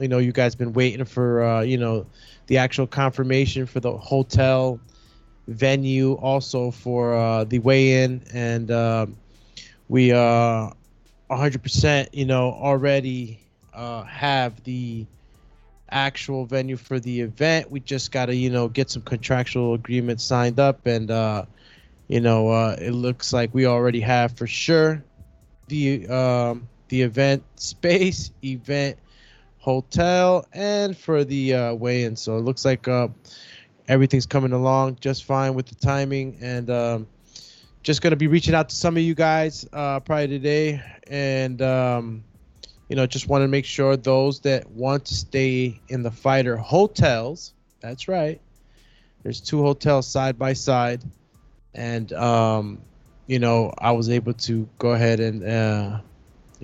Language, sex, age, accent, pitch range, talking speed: English, male, 20-39, American, 115-135 Hz, 150 wpm